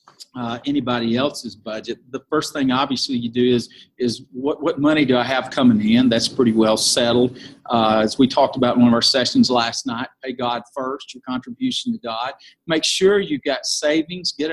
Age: 50-69